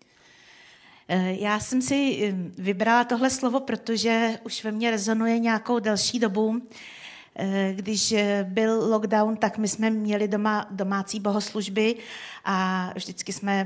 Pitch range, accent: 195-215 Hz, native